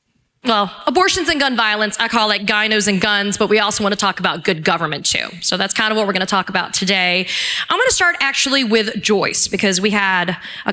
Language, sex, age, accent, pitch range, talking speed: English, female, 30-49, American, 200-255 Hz, 240 wpm